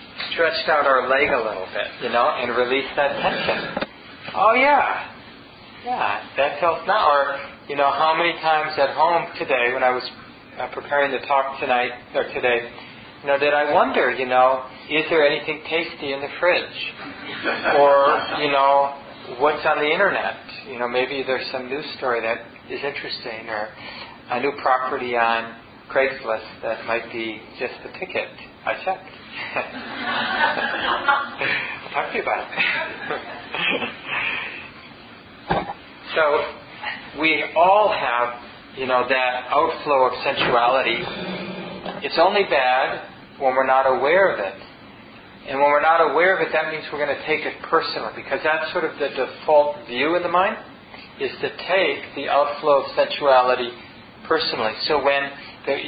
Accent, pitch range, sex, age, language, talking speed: American, 125-155 Hz, male, 40-59, English, 155 wpm